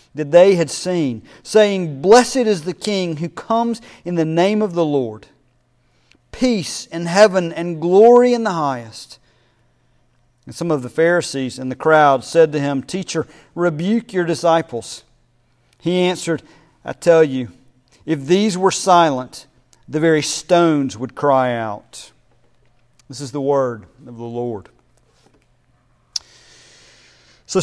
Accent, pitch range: American, 130-180 Hz